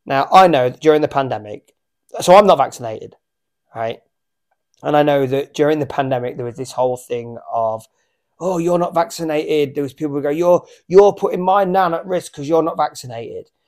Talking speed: 195 wpm